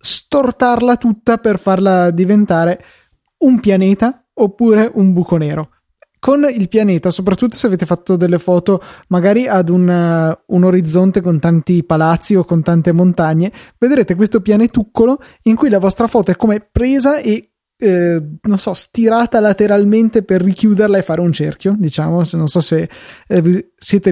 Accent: native